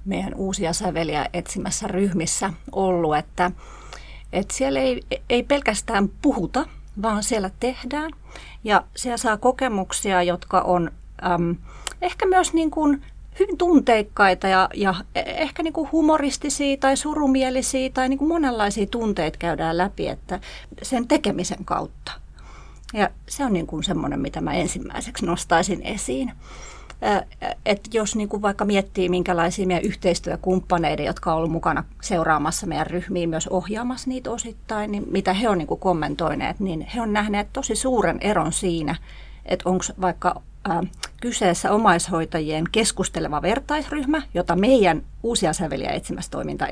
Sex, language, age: female, Finnish, 30-49